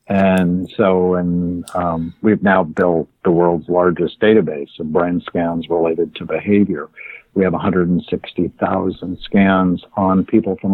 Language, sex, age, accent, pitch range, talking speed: English, male, 60-79, American, 90-110 Hz, 135 wpm